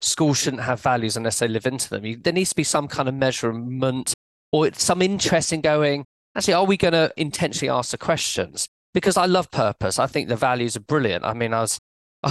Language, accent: English, British